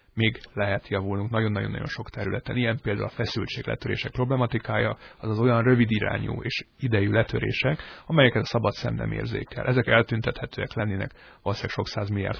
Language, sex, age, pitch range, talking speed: Hungarian, male, 30-49, 105-125 Hz, 140 wpm